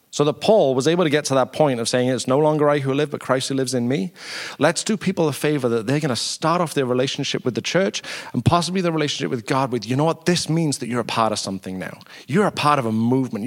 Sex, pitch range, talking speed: male, 120-155 Hz, 290 wpm